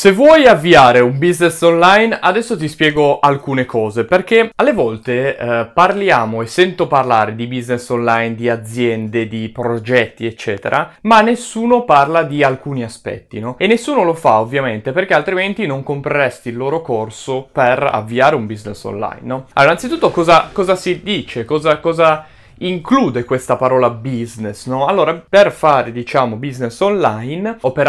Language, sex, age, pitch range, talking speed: Italian, male, 20-39, 120-170 Hz, 155 wpm